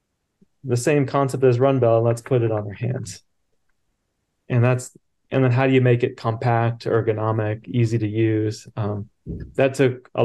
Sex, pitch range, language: male, 110-125 Hz, English